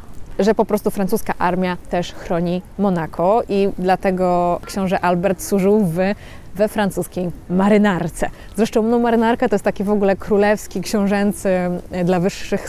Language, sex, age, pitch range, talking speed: Polish, female, 20-39, 185-220 Hz, 135 wpm